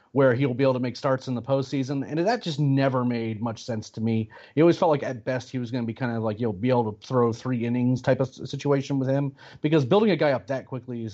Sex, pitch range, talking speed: male, 125-155 Hz, 290 wpm